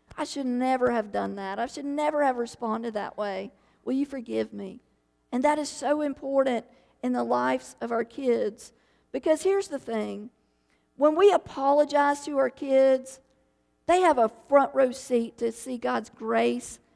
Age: 50-69